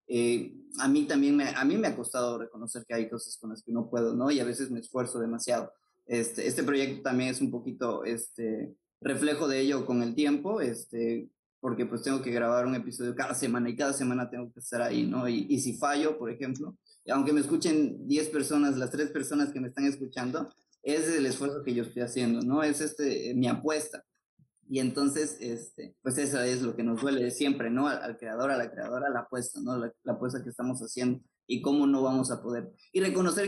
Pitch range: 120-150 Hz